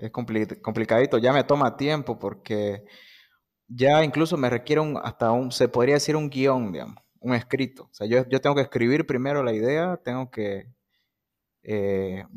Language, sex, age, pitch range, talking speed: Spanish, male, 20-39, 110-135 Hz, 165 wpm